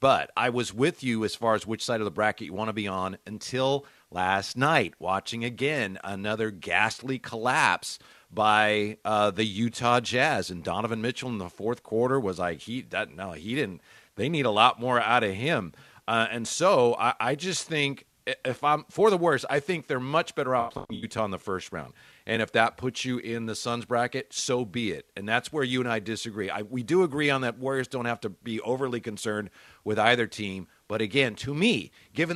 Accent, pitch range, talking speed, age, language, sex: American, 110-130 Hz, 215 wpm, 40-59, English, male